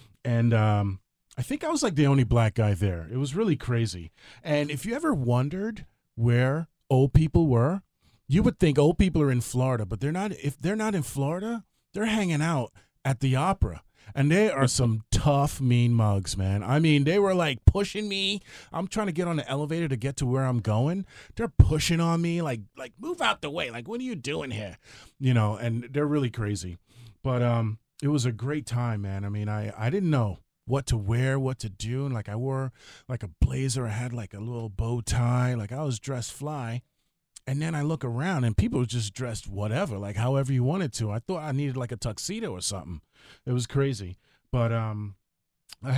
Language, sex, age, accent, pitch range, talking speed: English, male, 30-49, American, 110-145 Hz, 220 wpm